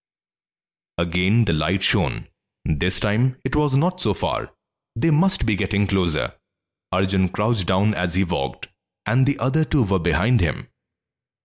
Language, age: English, 30-49